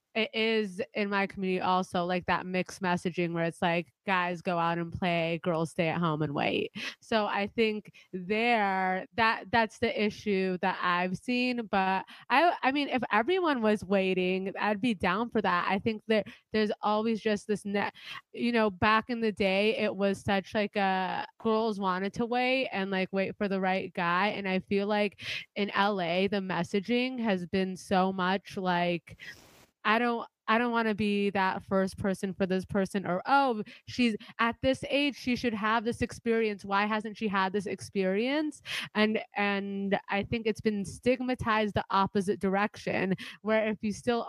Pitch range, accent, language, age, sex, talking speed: 185-220 Hz, American, English, 20-39, female, 185 wpm